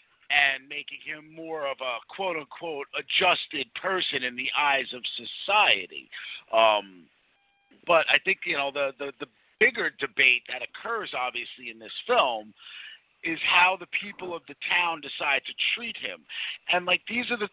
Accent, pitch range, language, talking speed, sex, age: American, 145-215 Hz, English, 160 wpm, male, 50-69